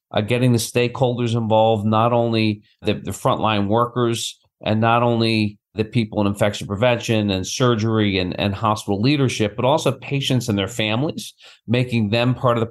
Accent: American